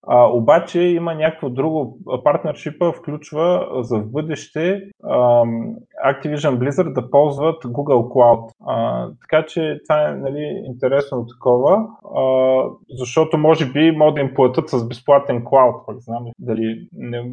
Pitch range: 115-150 Hz